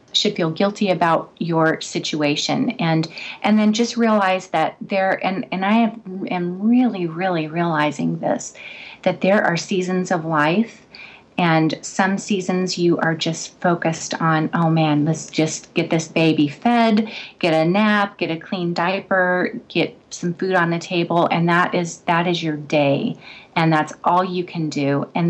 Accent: American